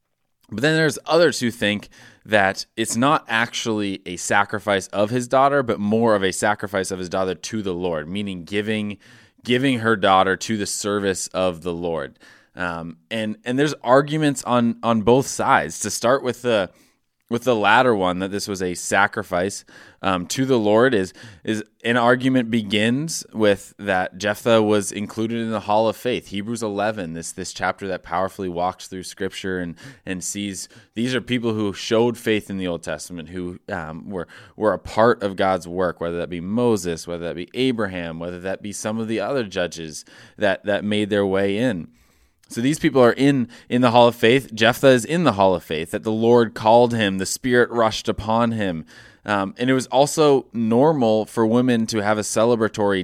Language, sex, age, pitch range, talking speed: English, male, 20-39, 95-115 Hz, 195 wpm